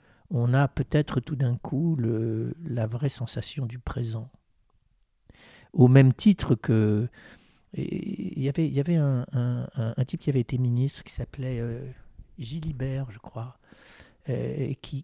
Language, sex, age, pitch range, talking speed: French, male, 60-79, 115-140 Hz, 150 wpm